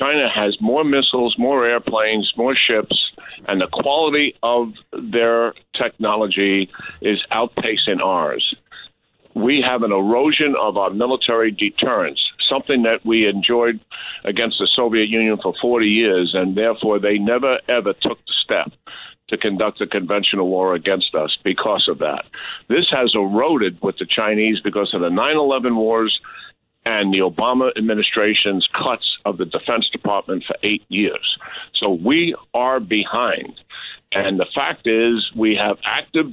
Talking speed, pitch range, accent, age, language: 145 wpm, 100-125 Hz, American, 50-69, English